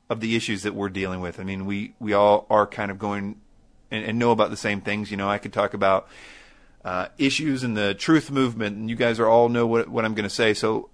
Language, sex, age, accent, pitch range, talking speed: English, male, 30-49, American, 100-120 Hz, 265 wpm